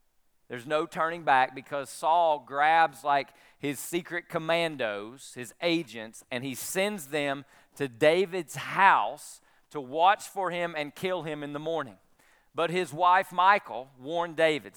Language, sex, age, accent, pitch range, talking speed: English, male, 40-59, American, 145-180 Hz, 145 wpm